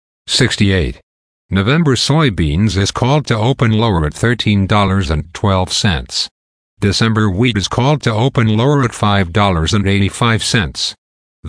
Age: 50-69